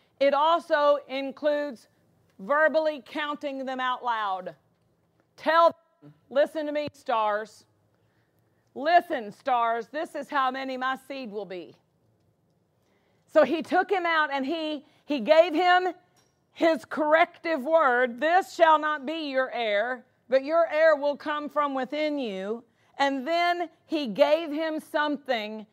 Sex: female